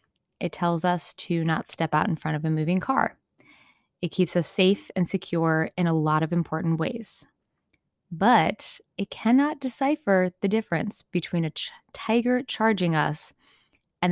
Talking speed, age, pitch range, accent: 155 wpm, 20-39, 160-210 Hz, American